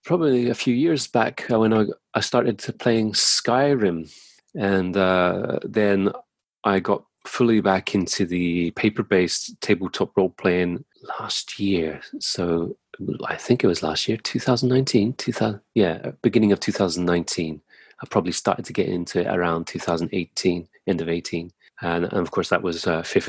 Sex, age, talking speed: male, 30-49, 160 wpm